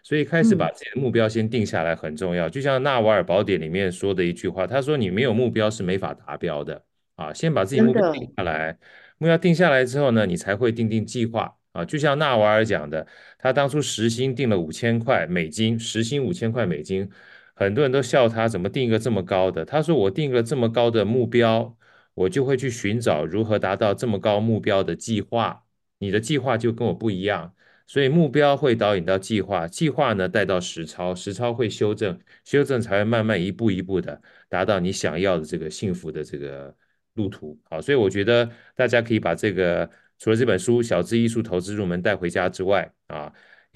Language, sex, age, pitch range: Chinese, male, 30-49, 95-130 Hz